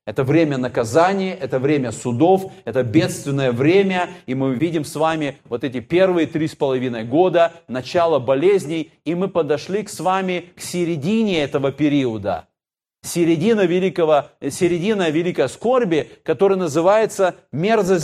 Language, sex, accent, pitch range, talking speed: Russian, male, native, 135-195 Hz, 135 wpm